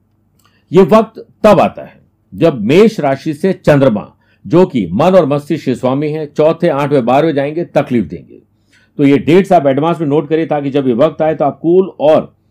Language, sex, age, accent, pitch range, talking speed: Hindi, male, 50-69, native, 125-165 Hz, 190 wpm